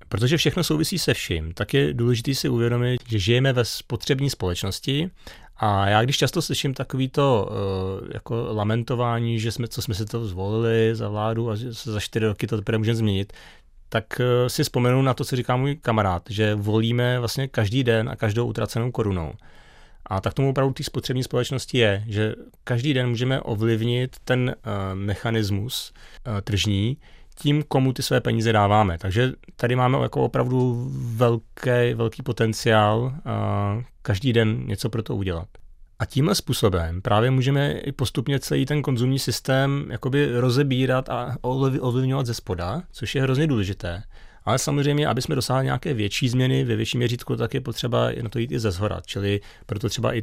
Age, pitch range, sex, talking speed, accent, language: 30-49, 110-130 Hz, male, 170 wpm, native, Czech